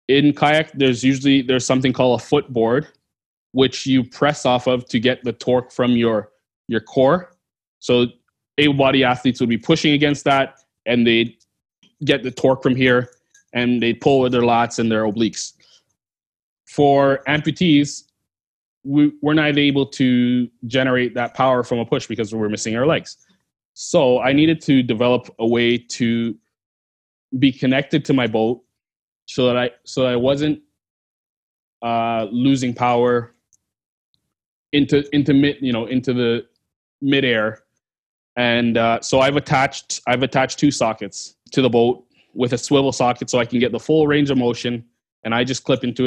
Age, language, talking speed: 20-39, English, 160 wpm